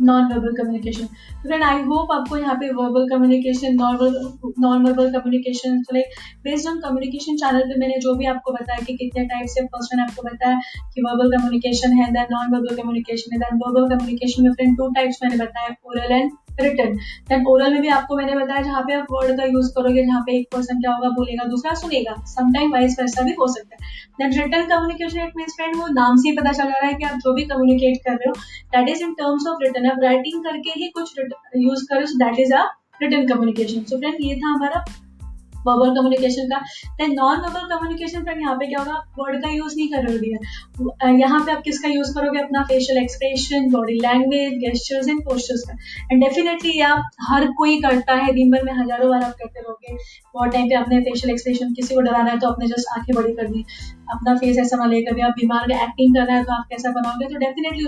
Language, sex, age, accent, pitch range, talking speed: Hindi, female, 10-29, native, 245-280 Hz, 175 wpm